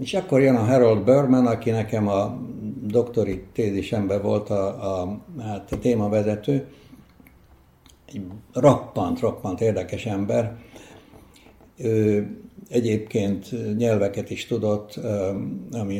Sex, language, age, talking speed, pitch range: male, Hungarian, 60-79, 100 wpm, 100-120 Hz